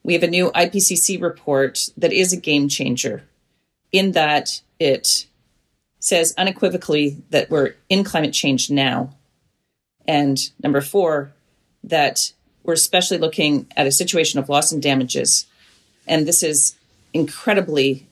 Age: 40-59